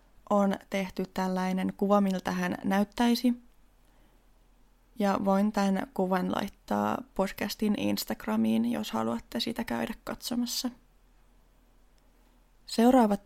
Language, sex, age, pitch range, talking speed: Finnish, female, 20-39, 185-215 Hz, 90 wpm